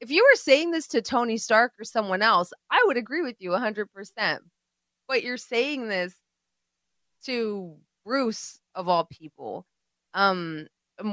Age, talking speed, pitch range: 20-39, 145 wpm, 170-220 Hz